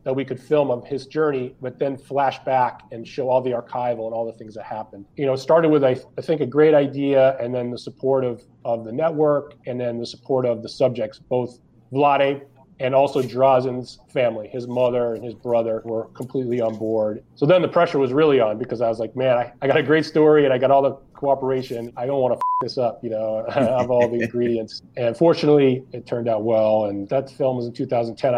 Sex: male